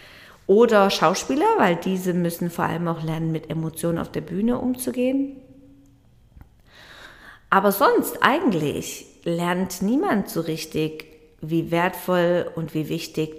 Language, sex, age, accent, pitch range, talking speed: German, female, 40-59, German, 170-205 Hz, 120 wpm